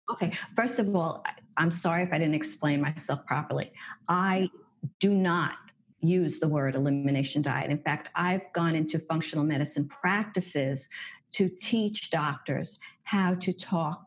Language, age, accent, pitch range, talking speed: English, 50-69, American, 155-180 Hz, 145 wpm